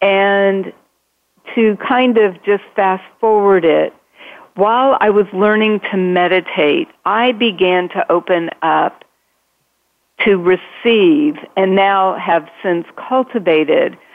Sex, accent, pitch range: female, American, 175-220 Hz